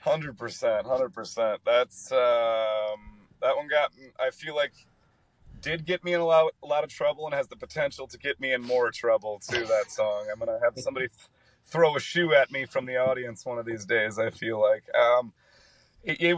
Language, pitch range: English, 110-145 Hz